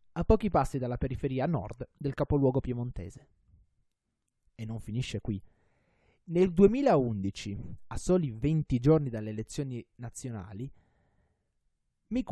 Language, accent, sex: Italian, native, male